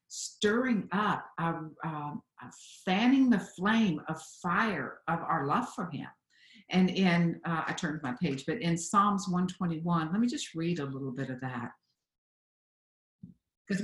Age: 60-79